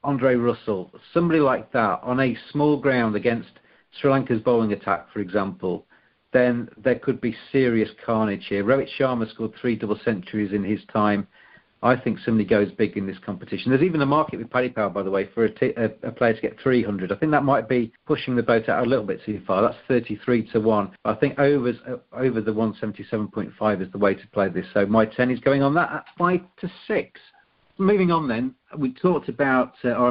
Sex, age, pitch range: male, 40-59, 110-135 Hz